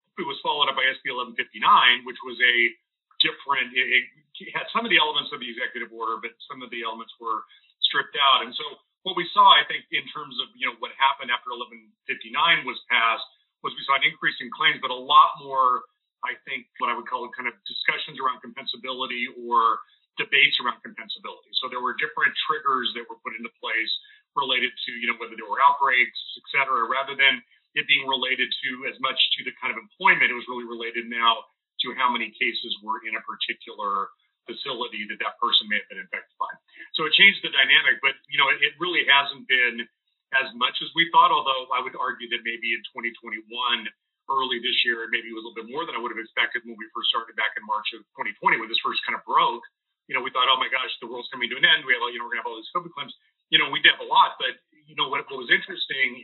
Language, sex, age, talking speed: English, male, 40-59, 235 wpm